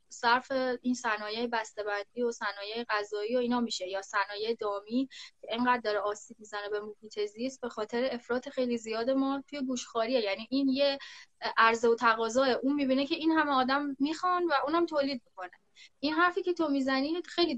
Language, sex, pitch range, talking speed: Persian, female, 215-260 Hz, 175 wpm